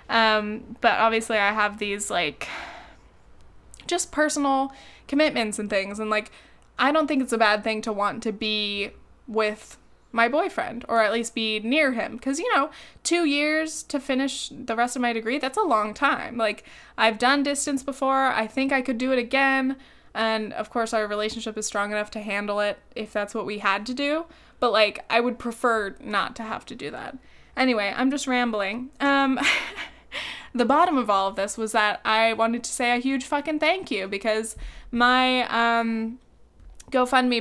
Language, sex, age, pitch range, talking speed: English, female, 10-29, 220-270 Hz, 190 wpm